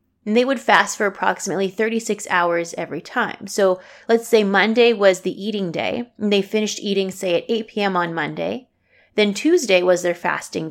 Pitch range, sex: 185-235 Hz, female